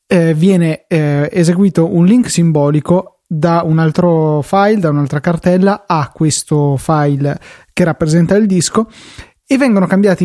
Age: 20-39